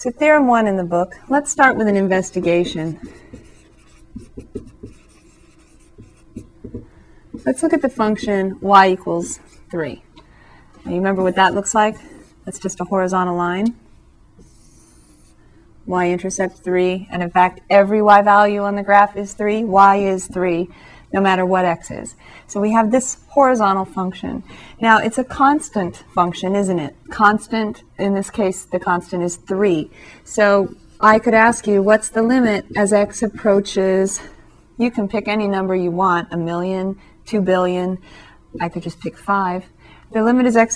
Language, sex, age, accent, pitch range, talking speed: English, female, 30-49, American, 185-220 Hz, 150 wpm